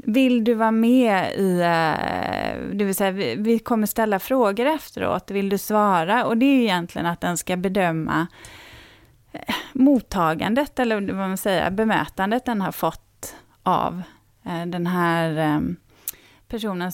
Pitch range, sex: 180-240 Hz, female